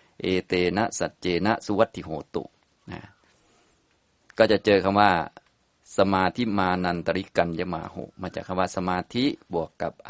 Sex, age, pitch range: male, 20-39, 90-100 Hz